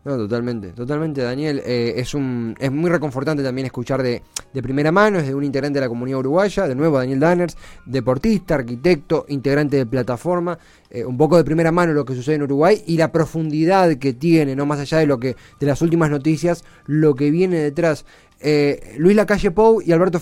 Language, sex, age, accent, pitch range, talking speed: Spanish, male, 20-39, Argentinian, 135-185 Hz, 205 wpm